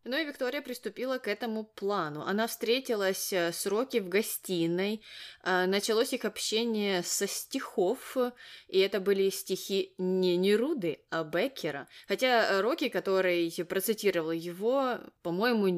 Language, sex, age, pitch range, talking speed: Russian, female, 20-39, 180-235 Hz, 120 wpm